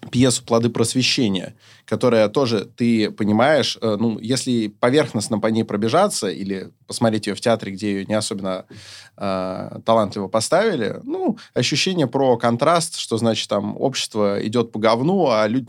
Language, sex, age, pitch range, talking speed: Russian, male, 20-39, 110-130 Hz, 150 wpm